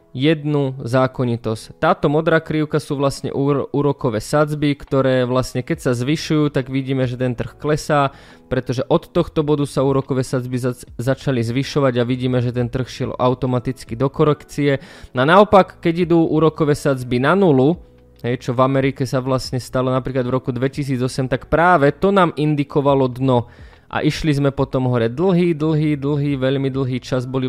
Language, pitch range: Slovak, 130-150 Hz